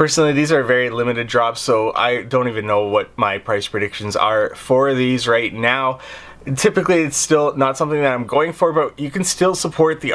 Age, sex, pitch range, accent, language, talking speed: 20-39, male, 120-140 Hz, American, English, 205 wpm